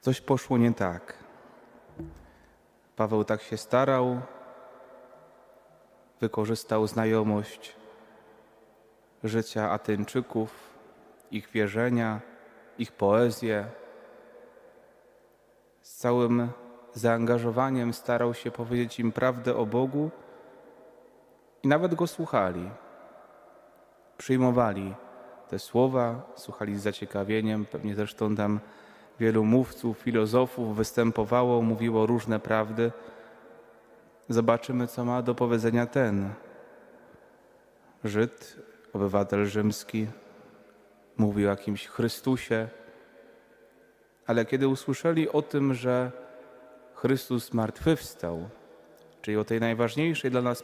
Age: 30-49